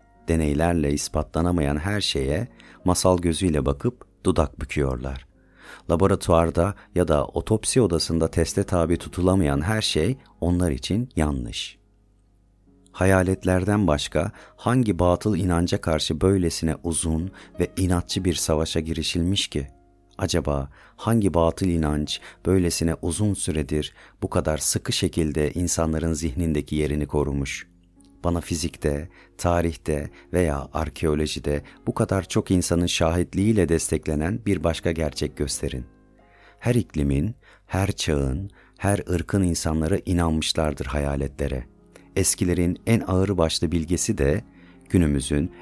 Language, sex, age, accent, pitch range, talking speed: Turkish, male, 40-59, native, 75-95 Hz, 110 wpm